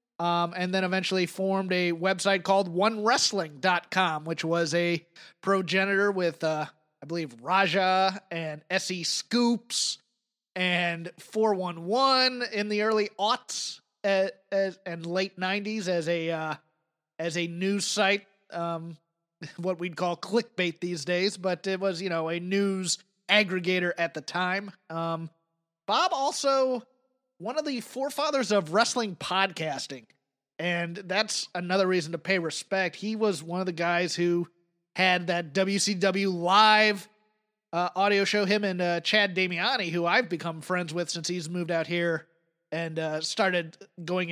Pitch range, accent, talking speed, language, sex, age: 170-195 Hz, American, 145 wpm, English, male, 30-49